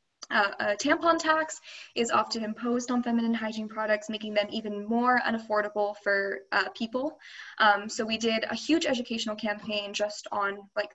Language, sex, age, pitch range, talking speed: English, female, 10-29, 210-245 Hz, 165 wpm